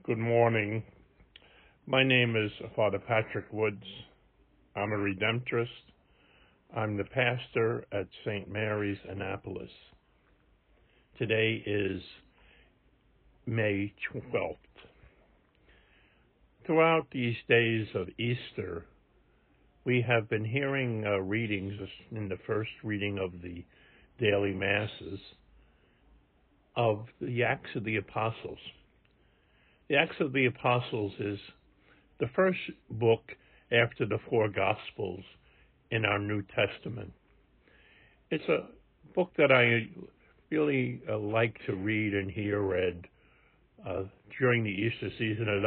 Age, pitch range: 60-79, 100-120 Hz